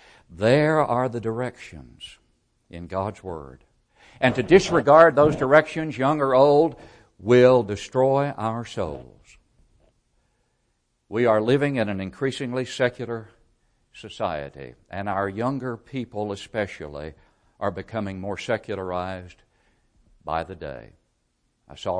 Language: English